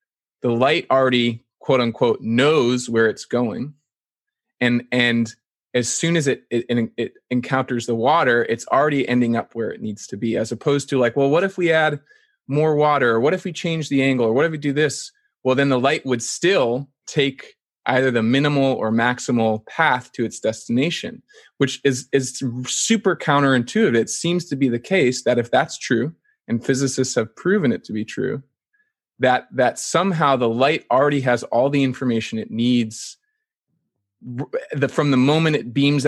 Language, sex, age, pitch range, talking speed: English, male, 20-39, 120-150 Hz, 185 wpm